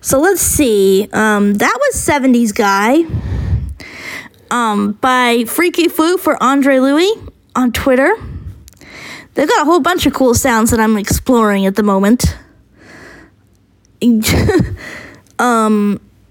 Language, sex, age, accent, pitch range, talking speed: English, female, 20-39, American, 210-280 Hz, 120 wpm